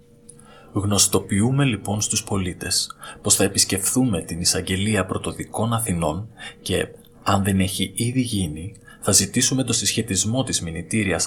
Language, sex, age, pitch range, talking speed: Greek, male, 30-49, 95-115 Hz, 120 wpm